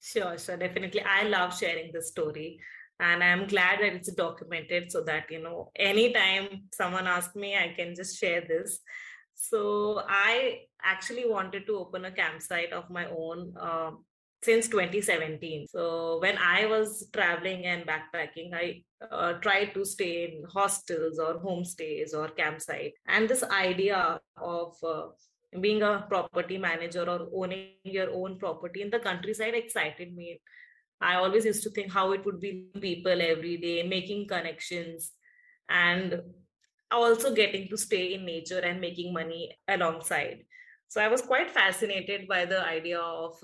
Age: 20-39